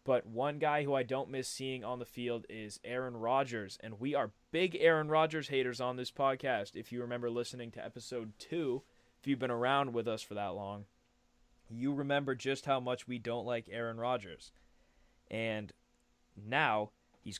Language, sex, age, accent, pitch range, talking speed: English, male, 20-39, American, 110-135 Hz, 185 wpm